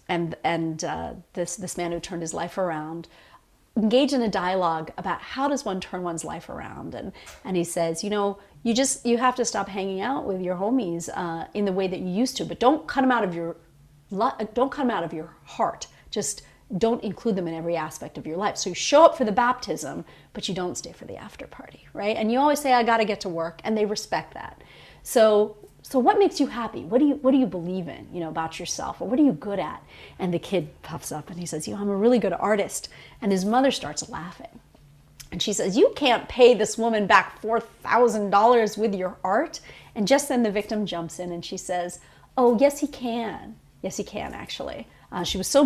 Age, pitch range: 40-59, 175-245 Hz